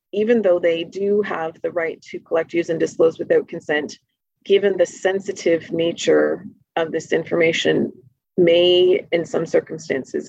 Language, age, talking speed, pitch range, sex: English, 30-49, 145 wpm, 165-205 Hz, female